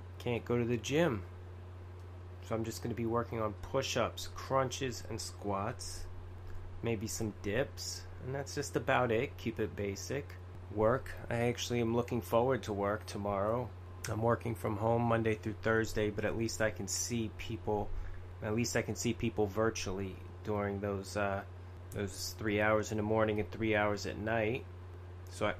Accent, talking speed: American, 170 wpm